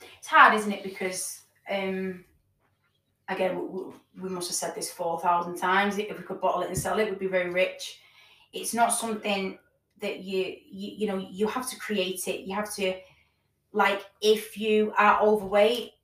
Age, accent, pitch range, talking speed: 20-39, British, 190-225 Hz, 185 wpm